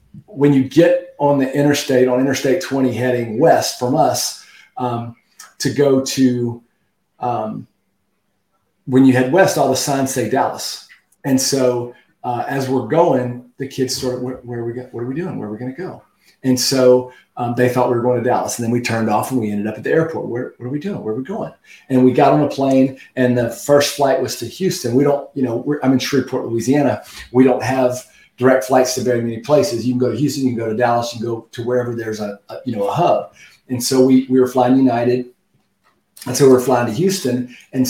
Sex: male